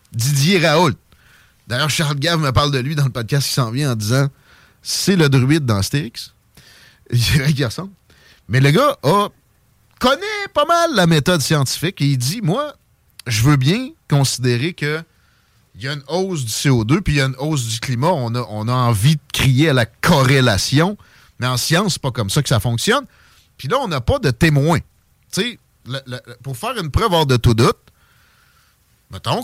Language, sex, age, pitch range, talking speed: French, male, 30-49, 120-155 Hz, 195 wpm